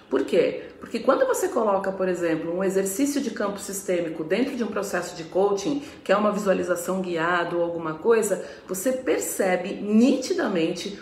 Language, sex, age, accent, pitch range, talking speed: Portuguese, female, 40-59, Brazilian, 180-255 Hz, 165 wpm